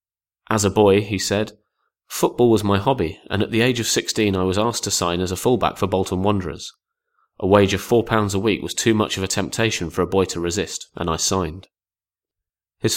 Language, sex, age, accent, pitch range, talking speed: English, male, 30-49, British, 85-105 Hz, 220 wpm